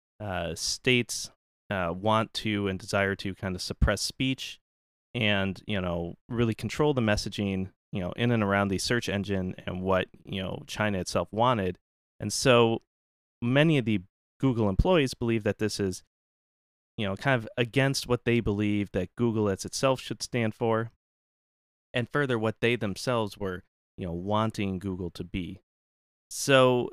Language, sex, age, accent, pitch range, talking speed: English, male, 30-49, American, 95-120 Hz, 165 wpm